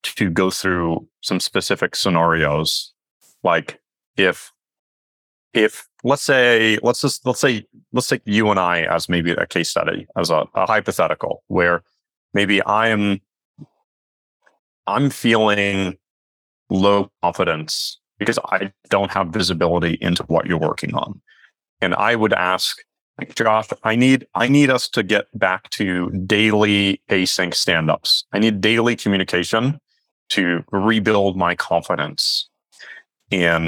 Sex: male